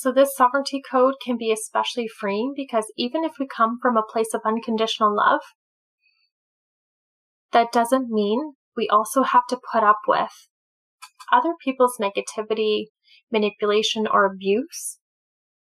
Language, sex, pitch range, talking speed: English, female, 220-265 Hz, 135 wpm